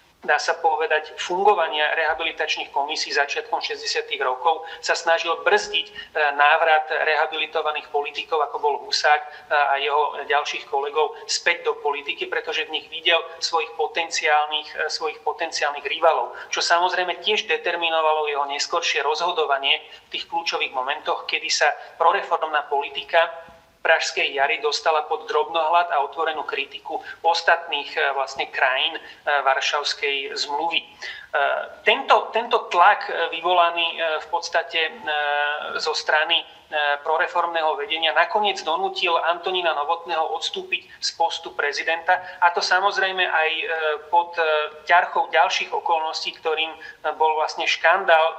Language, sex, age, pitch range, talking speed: Slovak, male, 30-49, 155-185 Hz, 115 wpm